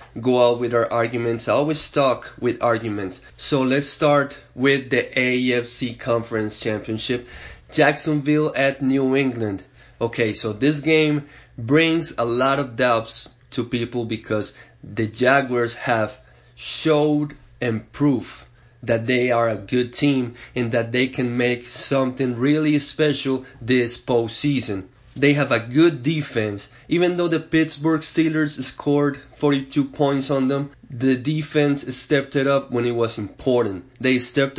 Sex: male